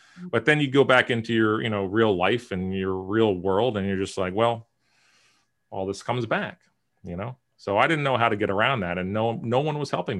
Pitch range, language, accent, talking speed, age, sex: 95-115 Hz, English, American, 240 wpm, 30-49, male